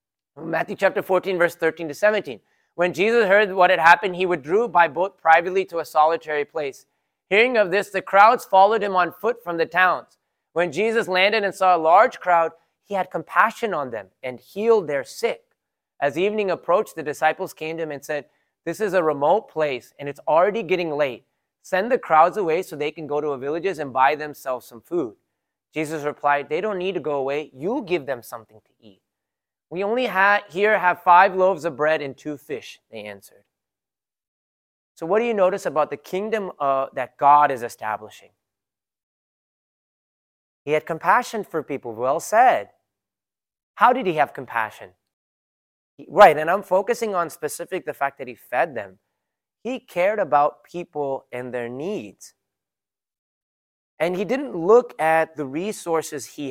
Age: 20-39